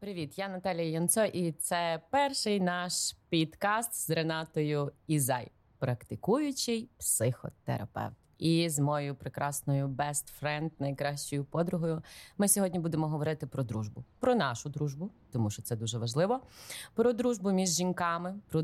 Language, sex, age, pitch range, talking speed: Ukrainian, female, 20-39, 140-180 Hz, 130 wpm